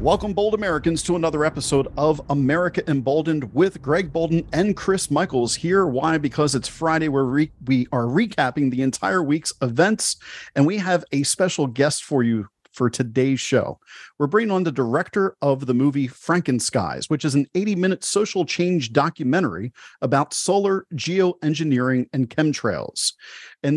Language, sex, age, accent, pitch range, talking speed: English, male, 40-59, American, 135-175 Hz, 155 wpm